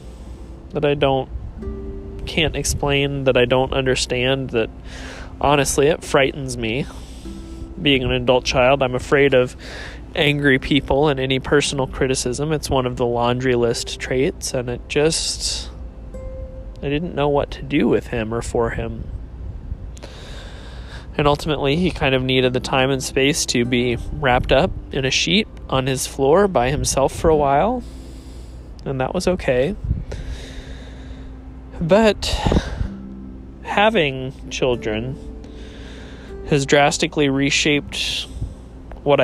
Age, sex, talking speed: 20-39, male, 130 wpm